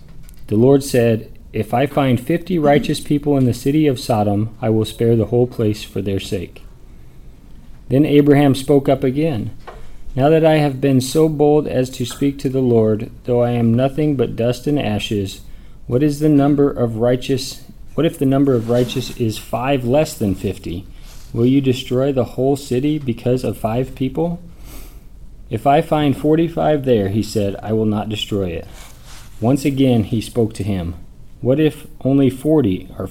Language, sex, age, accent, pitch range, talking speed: English, male, 40-59, American, 110-140 Hz, 180 wpm